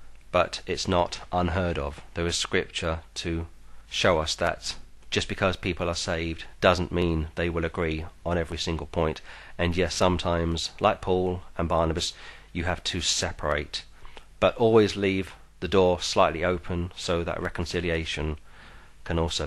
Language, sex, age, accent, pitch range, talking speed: English, male, 40-59, British, 80-100 Hz, 150 wpm